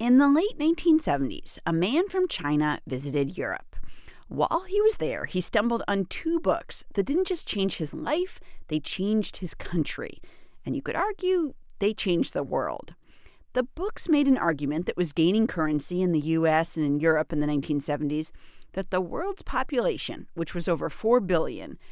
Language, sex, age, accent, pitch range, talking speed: English, female, 40-59, American, 160-245 Hz, 175 wpm